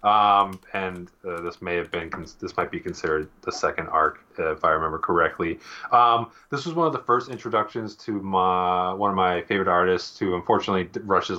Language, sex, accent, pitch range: English, male, American, 90-110 Hz